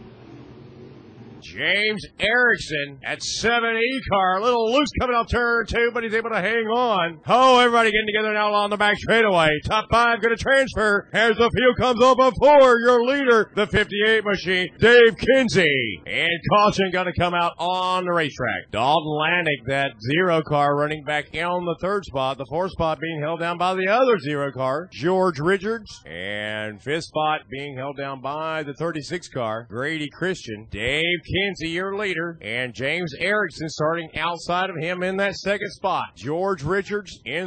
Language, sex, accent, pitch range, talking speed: English, male, American, 150-210 Hz, 175 wpm